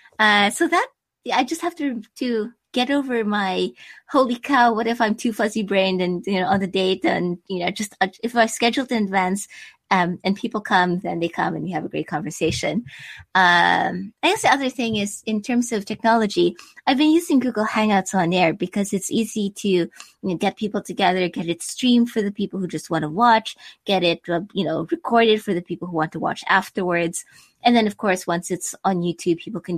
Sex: female